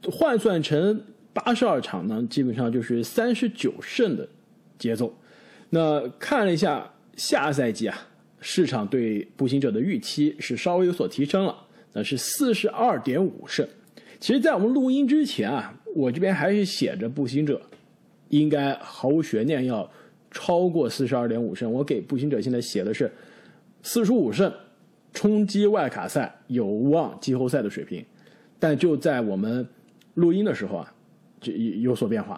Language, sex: Chinese, male